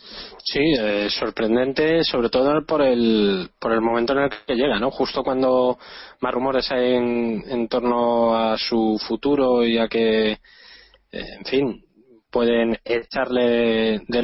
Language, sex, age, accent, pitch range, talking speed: Spanish, male, 20-39, Spanish, 110-125 Hz, 150 wpm